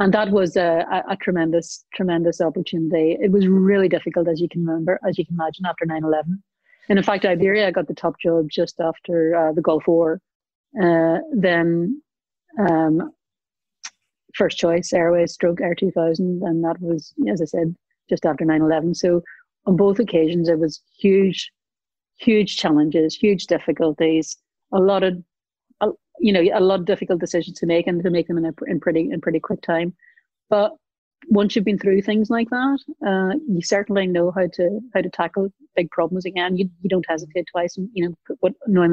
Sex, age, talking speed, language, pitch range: female, 30-49, 185 wpm, English, 170-200 Hz